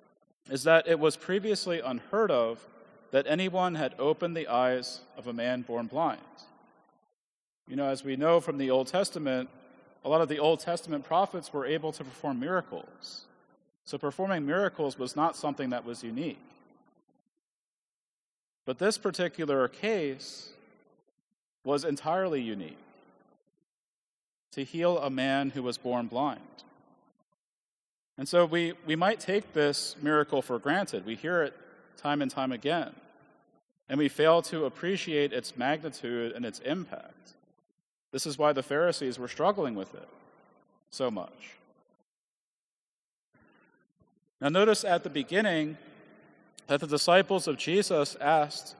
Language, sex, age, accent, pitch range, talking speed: English, male, 40-59, American, 130-170 Hz, 140 wpm